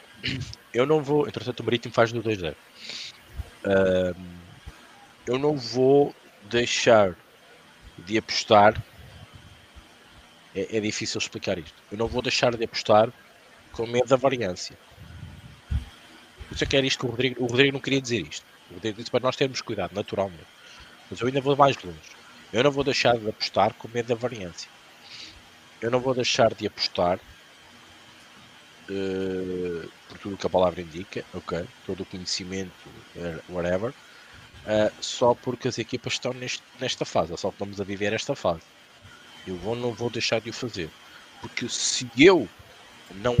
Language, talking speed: Portuguese, 160 wpm